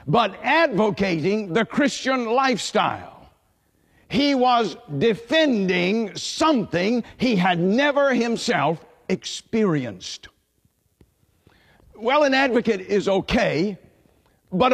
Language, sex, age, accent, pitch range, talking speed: English, male, 50-69, American, 195-260 Hz, 80 wpm